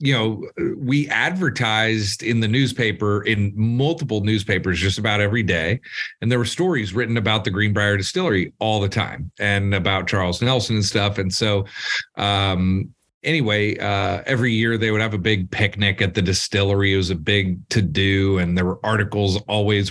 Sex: male